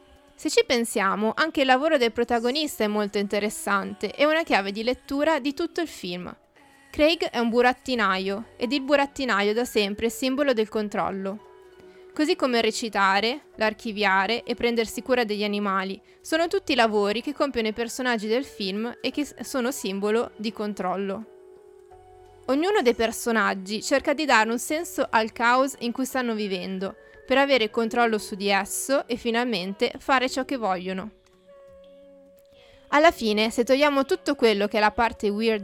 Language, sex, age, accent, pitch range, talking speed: Italian, female, 20-39, native, 210-275 Hz, 160 wpm